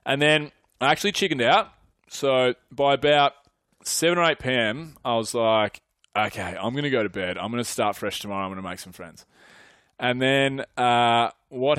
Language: English